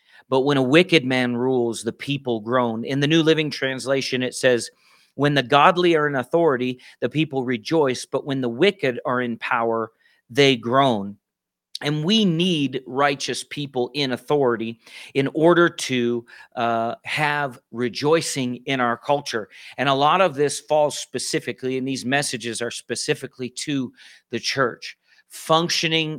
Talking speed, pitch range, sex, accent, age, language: 150 wpm, 120-145 Hz, male, American, 40-59, English